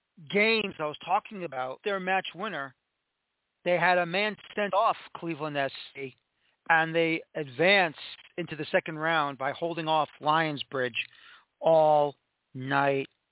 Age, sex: 40-59, male